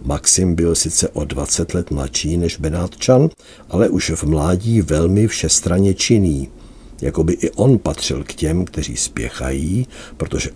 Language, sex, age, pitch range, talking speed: Czech, male, 60-79, 75-100 Hz, 140 wpm